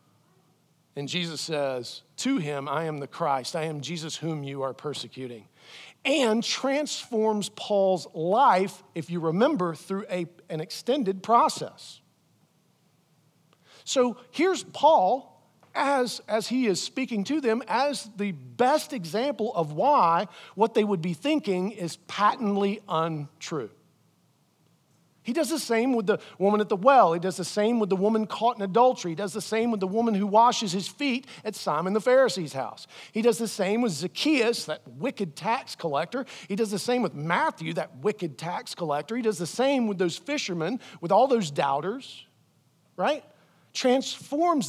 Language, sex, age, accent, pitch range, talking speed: English, male, 50-69, American, 170-240 Hz, 160 wpm